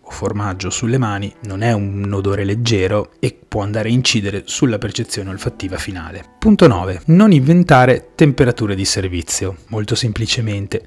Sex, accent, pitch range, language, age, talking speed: male, native, 95-125 Hz, Italian, 30-49, 145 wpm